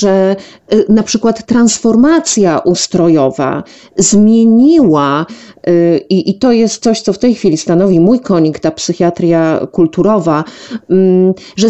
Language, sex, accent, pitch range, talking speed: Polish, female, native, 170-215 Hz, 115 wpm